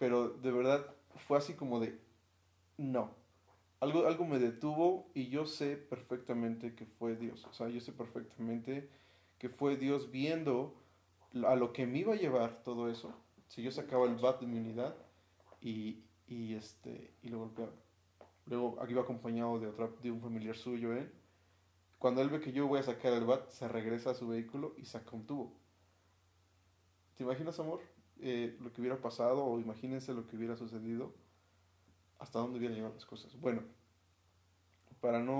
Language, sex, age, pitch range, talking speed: Spanish, male, 30-49, 100-130 Hz, 180 wpm